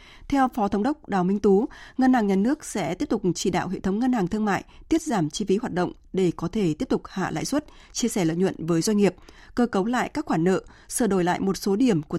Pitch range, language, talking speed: 185-235 Hz, Vietnamese, 275 wpm